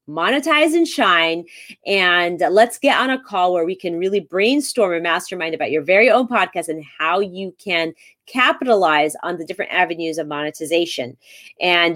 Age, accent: 30-49, American